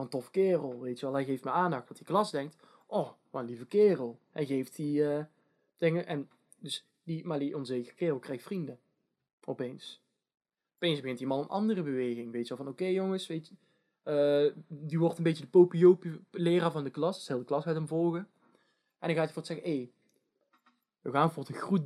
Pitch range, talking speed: 145-200 Hz, 215 wpm